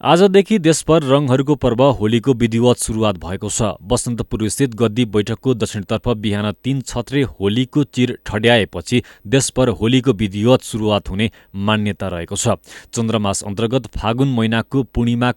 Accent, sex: Indian, male